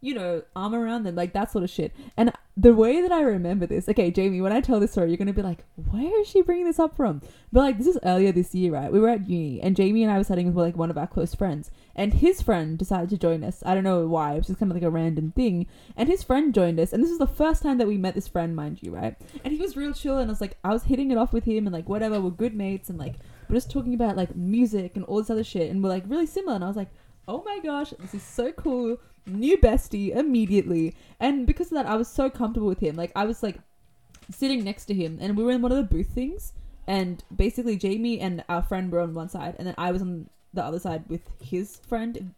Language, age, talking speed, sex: English, 20-39, 285 wpm, female